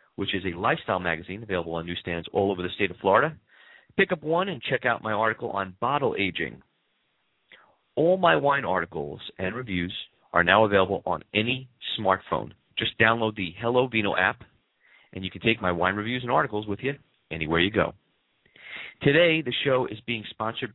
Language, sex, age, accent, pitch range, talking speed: English, male, 40-59, American, 95-135 Hz, 180 wpm